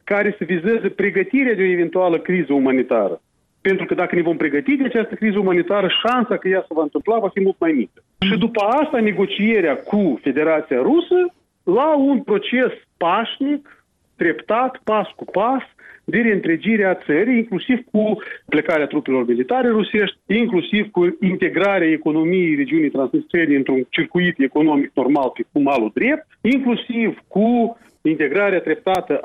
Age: 40-59